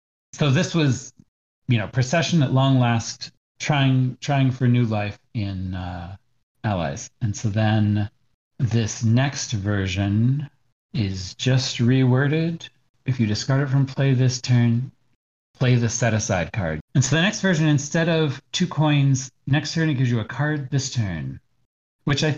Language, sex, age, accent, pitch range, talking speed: English, male, 40-59, American, 110-135 Hz, 160 wpm